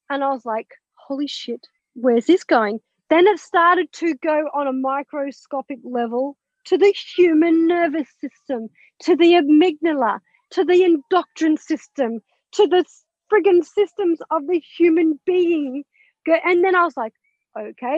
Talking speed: 145 wpm